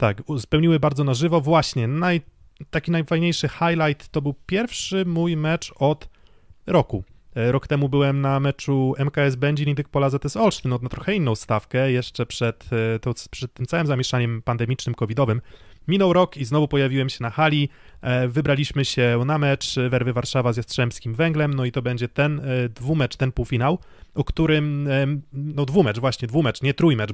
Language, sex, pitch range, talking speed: Polish, male, 125-155 Hz, 165 wpm